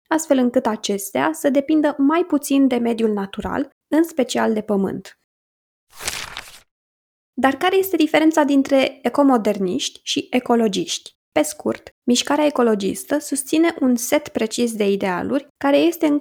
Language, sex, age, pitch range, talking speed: Romanian, female, 20-39, 220-285 Hz, 130 wpm